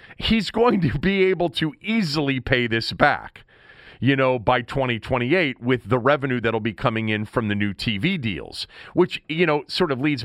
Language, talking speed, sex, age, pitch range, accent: English, 185 wpm, male, 40-59, 100-140 Hz, American